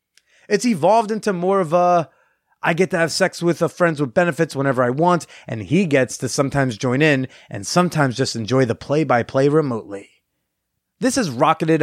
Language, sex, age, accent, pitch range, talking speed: English, male, 30-49, American, 130-170 Hz, 185 wpm